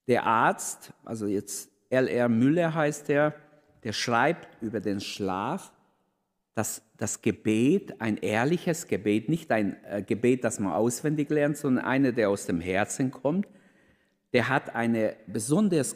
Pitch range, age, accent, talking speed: 105-150 Hz, 50-69, German, 140 wpm